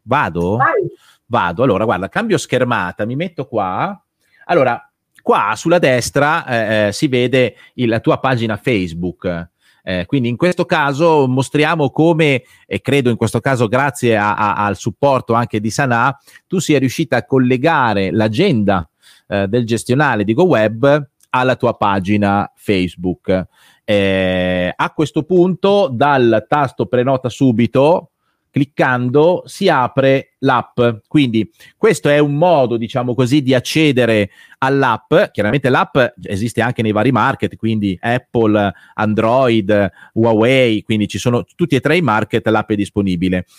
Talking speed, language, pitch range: 130 wpm, Italian, 110-145 Hz